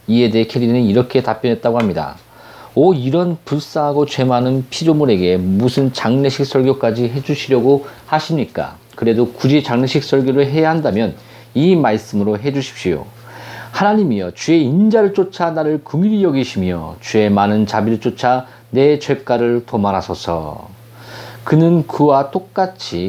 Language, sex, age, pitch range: Korean, male, 40-59, 115-145 Hz